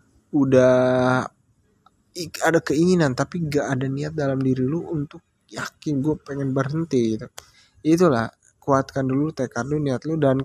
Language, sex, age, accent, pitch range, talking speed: Indonesian, male, 20-39, native, 120-155 Hz, 145 wpm